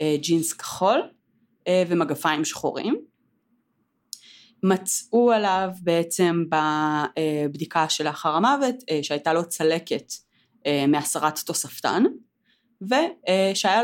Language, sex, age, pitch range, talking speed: Hebrew, female, 30-49, 155-220 Hz, 75 wpm